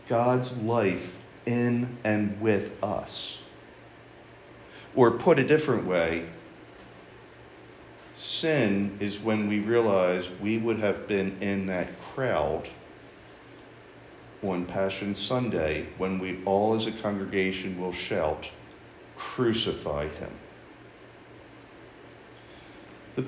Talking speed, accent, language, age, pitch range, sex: 95 wpm, American, English, 50-69, 100-125 Hz, male